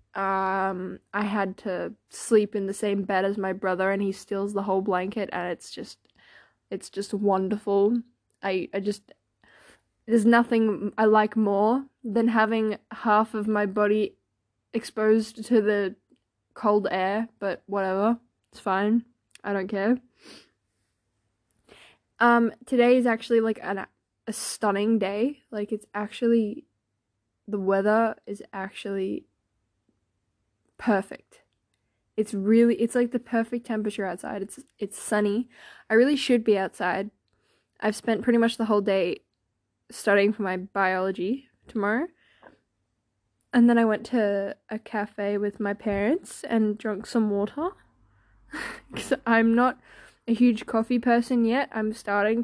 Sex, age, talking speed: female, 10-29, 135 wpm